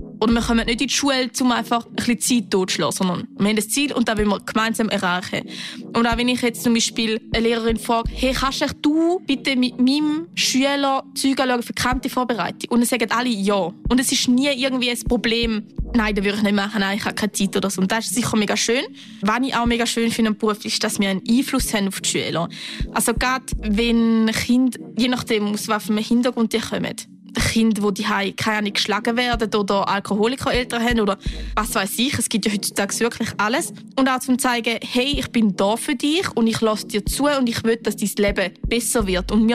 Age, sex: 20-39, female